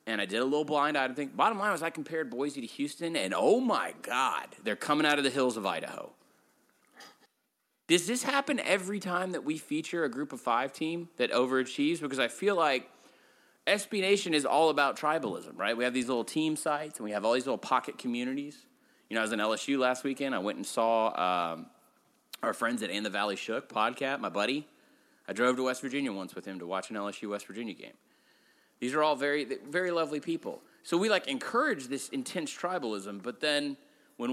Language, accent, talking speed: English, American, 215 wpm